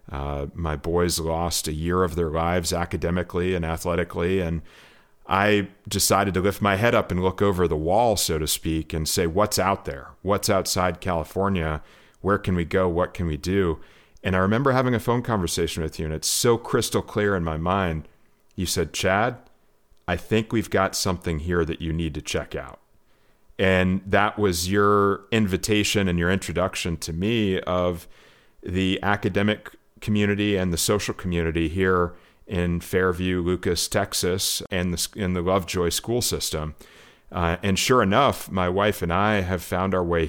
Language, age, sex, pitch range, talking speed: English, 40-59, male, 85-100 Hz, 175 wpm